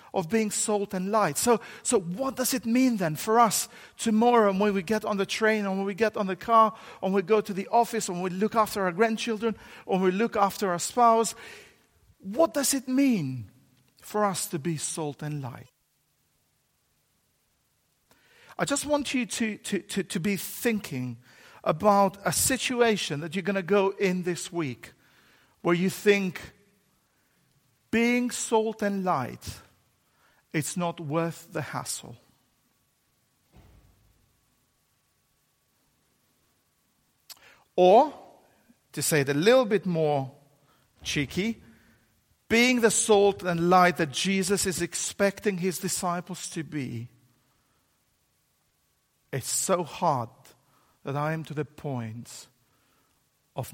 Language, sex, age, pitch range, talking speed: English, male, 50-69, 155-220 Hz, 135 wpm